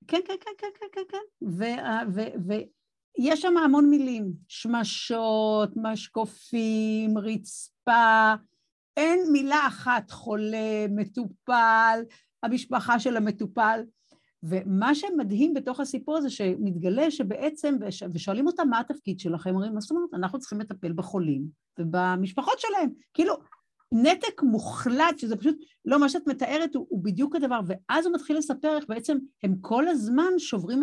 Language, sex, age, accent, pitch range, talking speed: Hebrew, female, 50-69, native, 195-285 Hz, 135 wpm